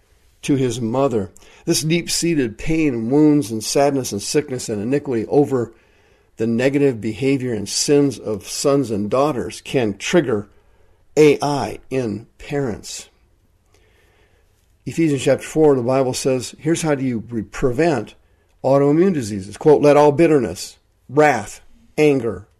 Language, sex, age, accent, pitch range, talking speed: English, male, 50-69, American, 105-140 Hz, 125 wpm